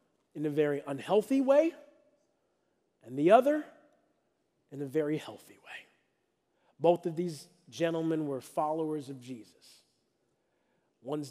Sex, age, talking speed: male, 40-59, 115 wpm